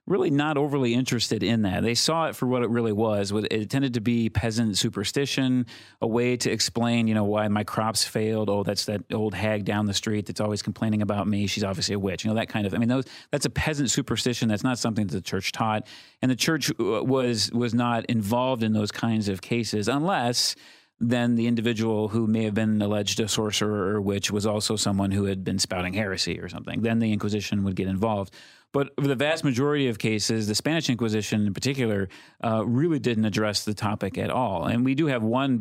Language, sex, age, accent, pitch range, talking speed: English, male, 40-59, American, 105-120 Hz, 220 wpm